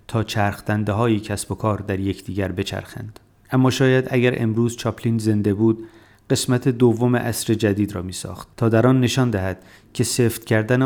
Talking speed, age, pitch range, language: 170 wpm, 30-49, 100-120 Hz, Persian